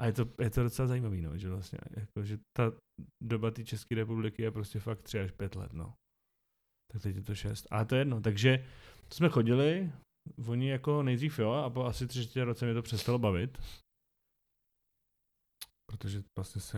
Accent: native